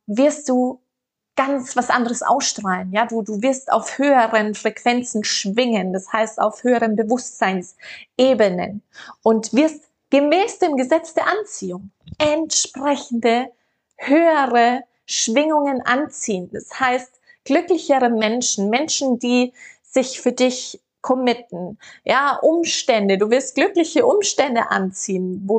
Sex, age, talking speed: female, 20-39, 115 wpm